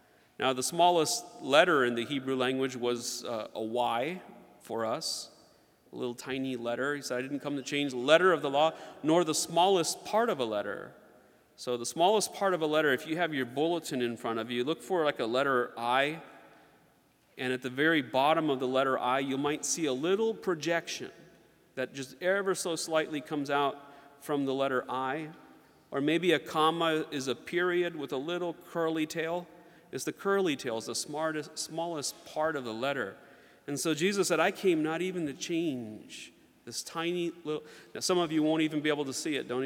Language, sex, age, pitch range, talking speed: English, male, 40-59, 130-165 Hz, 200 wpm